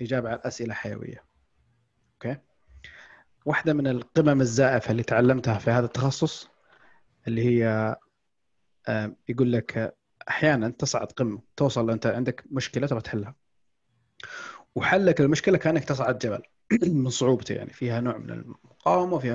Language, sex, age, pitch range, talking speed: Arabic, male, 30-49, 115-150 Hz, 125 wpm